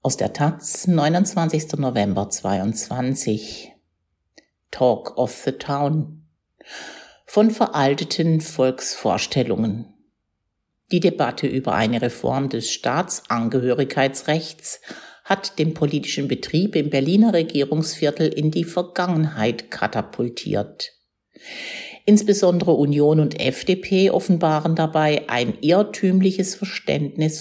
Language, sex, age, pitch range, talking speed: German, female, 60-79, 135-180 Hz, 90 wpm